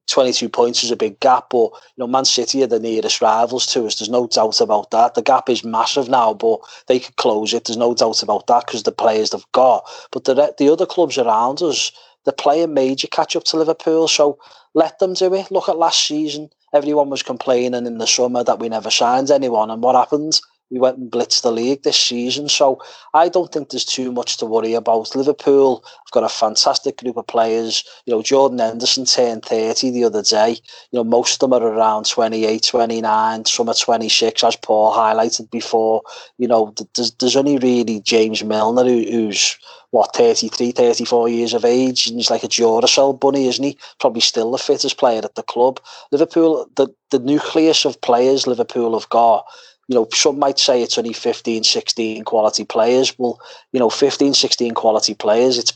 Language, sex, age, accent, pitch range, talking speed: English, male, 30-49, British, 115-140 Hz, 200 wpm